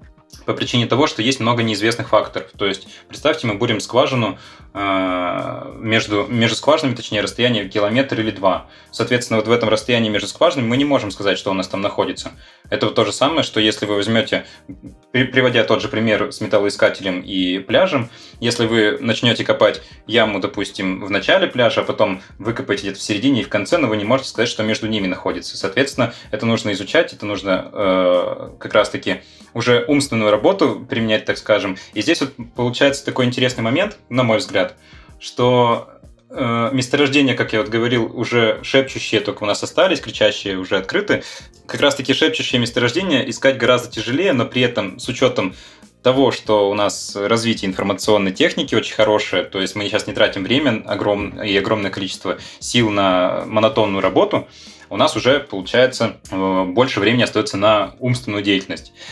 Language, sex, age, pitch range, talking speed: Russian, male, 20-39, 100-120 Hz, 170 wpm